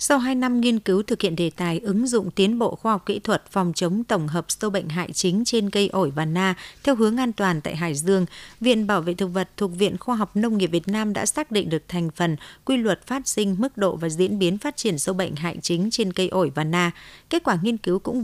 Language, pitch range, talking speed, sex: Vietnamese, 175-215 Hz, 265 wpm, female